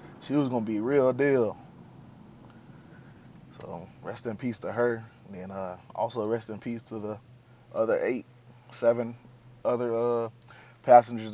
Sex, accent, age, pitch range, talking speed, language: male, American, 20-39, 110-125 Hz, 145 wpm, English